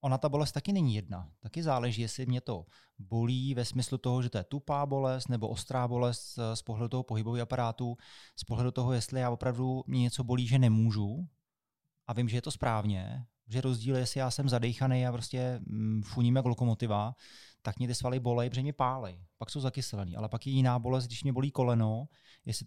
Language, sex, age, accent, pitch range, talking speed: Czech, male, 20-39, native, 115-140 Hz, 200 wpm